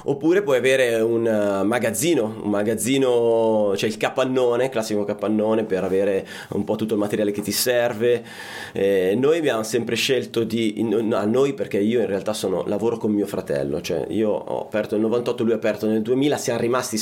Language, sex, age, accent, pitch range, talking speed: Italian, male, 30-49, native, 105-130 Hz, 185 wpm